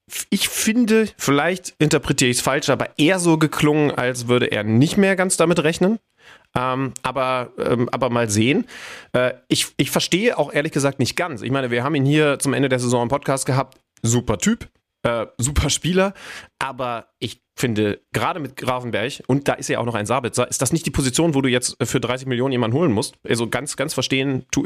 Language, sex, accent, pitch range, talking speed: German, male, German, 115-140 Hz, 205 wpm